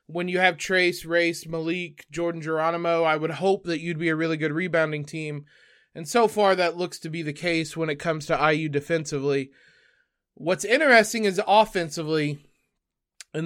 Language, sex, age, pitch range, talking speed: English, male, 20-39, 155-190 Hz, 175 wpm